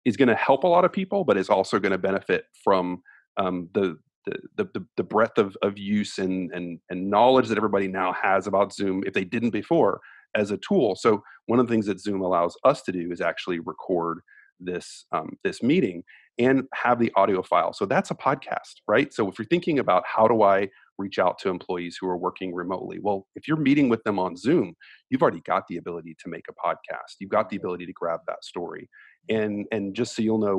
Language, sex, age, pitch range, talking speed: English, male, 30-49, 95-115 Hz, 230 wpm